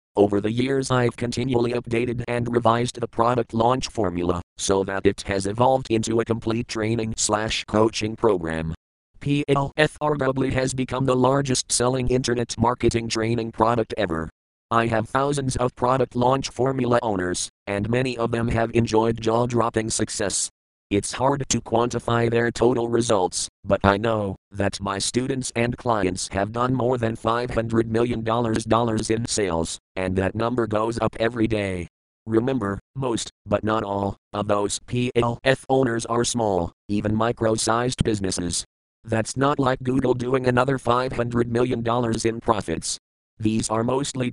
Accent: American